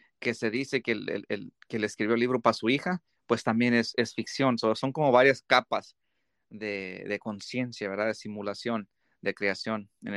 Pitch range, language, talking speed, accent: 115-140 Hz, English, 200 wpm, Mexican